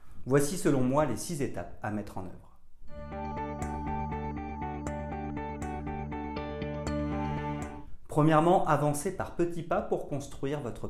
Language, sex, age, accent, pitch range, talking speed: French, male, 40-59, French, 105-150 Hz, 100 wpm